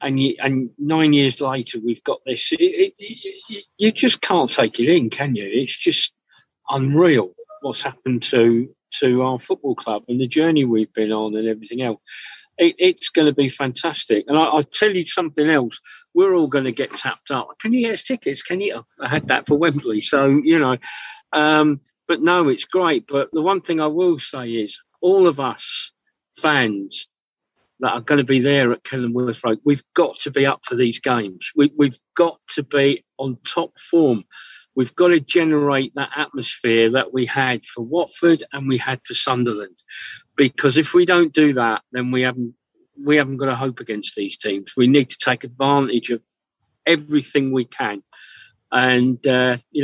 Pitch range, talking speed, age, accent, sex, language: 125-160 Hz, 195 wpm, 50-69, British, male, English